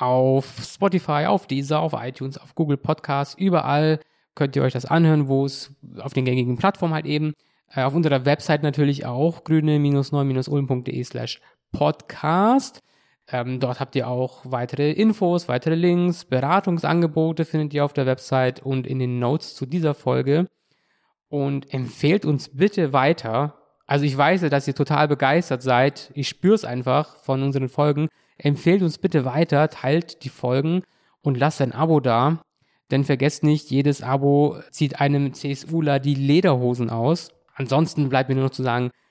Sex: male